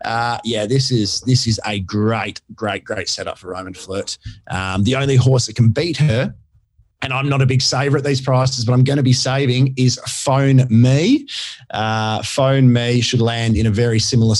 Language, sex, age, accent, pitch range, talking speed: English, male, 30-49, Australian, 115-135 Hz, 205 wpm